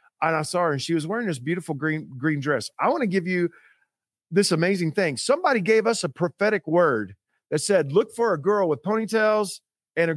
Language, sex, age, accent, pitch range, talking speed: English, male, 40-59, American, 140-190 Hz, 220 wpm